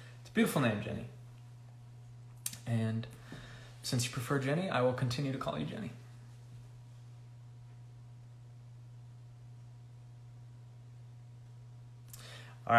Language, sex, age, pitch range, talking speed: English, male, 20-39, 120-135 Hz, 75 wpm